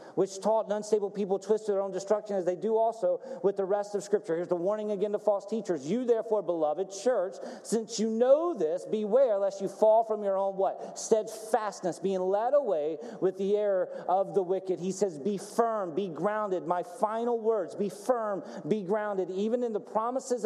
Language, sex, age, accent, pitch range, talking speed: English, male, 40-59, American, 190-235 Hz, 205 wpm